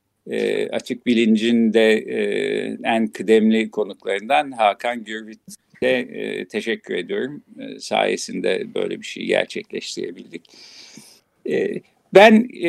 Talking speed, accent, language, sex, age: 75 wpm, native, Turkish, male, 50-69